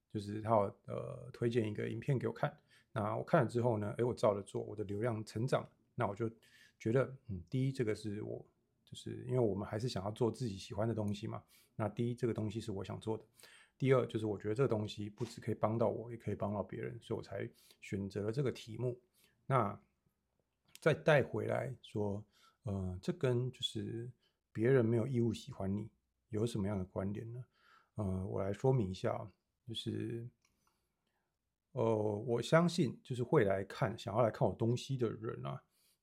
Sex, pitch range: male, 105-125 Hz